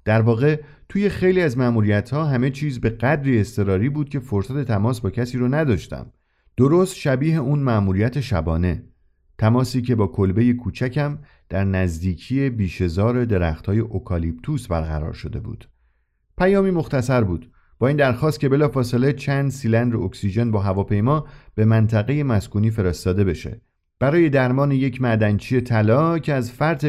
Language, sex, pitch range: Persian, male, 105-140 Hz